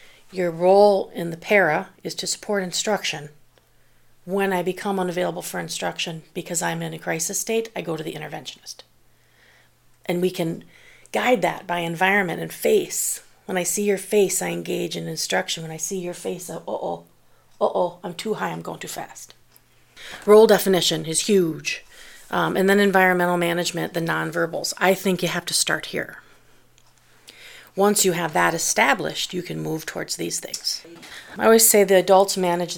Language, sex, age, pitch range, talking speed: English, female, 40-59, 170-200 Hz, 170 wpm